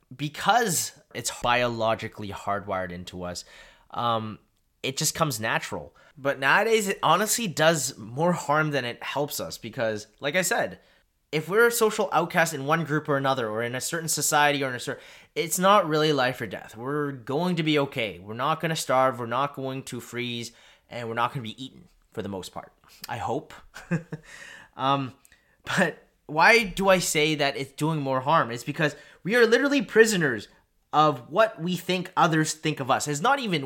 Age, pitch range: 20-39, 130-175 Hz